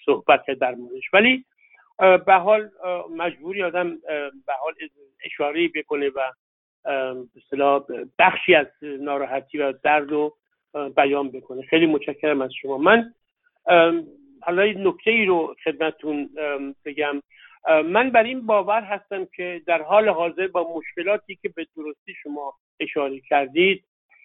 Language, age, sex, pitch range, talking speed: Persian, 60-79, male, 150-205 Hz, 120 wpm